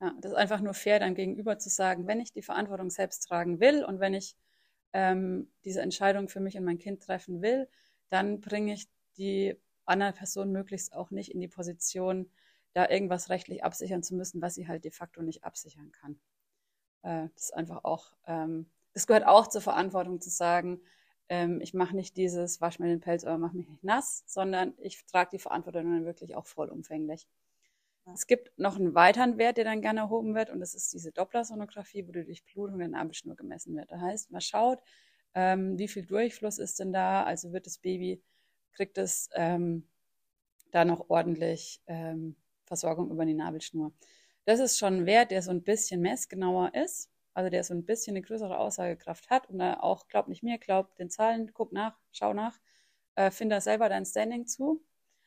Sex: female